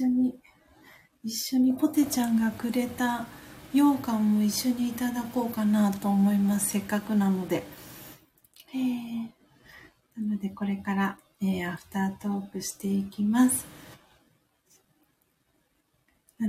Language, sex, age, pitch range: Japanese, female, 40-59, 190-225 Hz